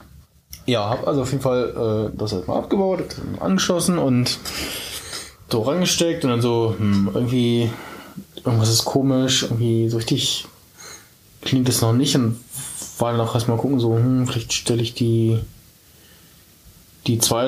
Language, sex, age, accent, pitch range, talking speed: German, male, 20-39, German, 110-130 Hz, 160 wpm